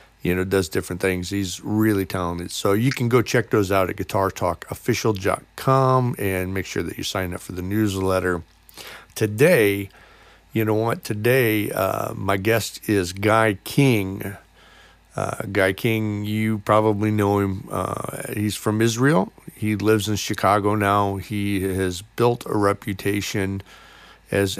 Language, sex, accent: English, male, American